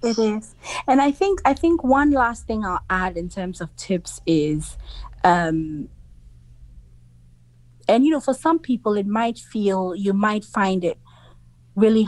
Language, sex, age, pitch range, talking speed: English, female, 30-49, 160-215 Hz, 160 wpm